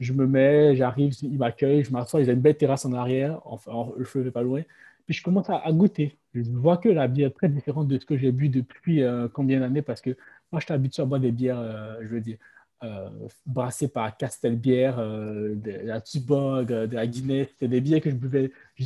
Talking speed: 245 wpm